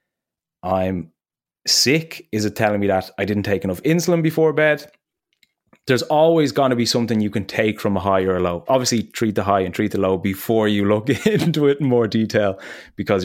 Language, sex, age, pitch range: English, male, 20-39, 100-125 Hz